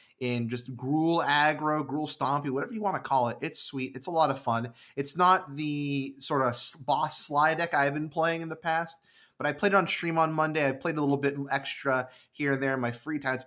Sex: male